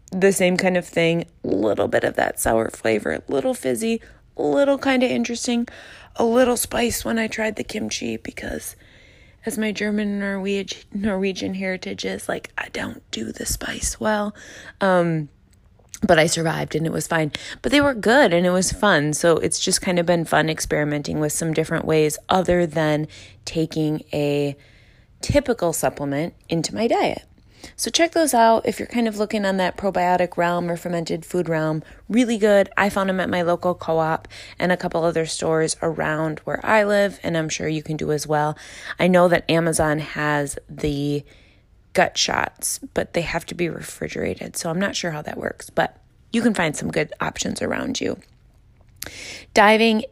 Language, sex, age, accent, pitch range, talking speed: English, female, 20-39, American, 155-205 Hz, 185 wpm